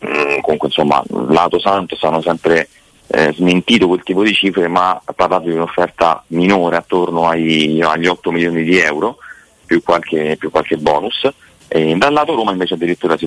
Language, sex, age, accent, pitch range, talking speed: Italian, male, 30-49, native, 80-90 Hz, 165 wpm